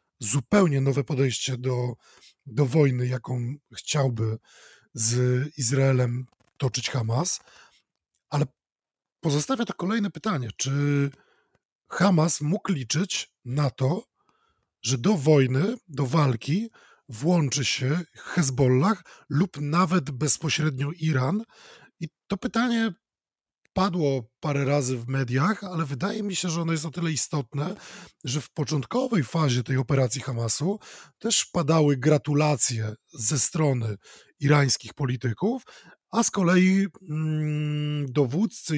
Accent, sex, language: native, male, Polish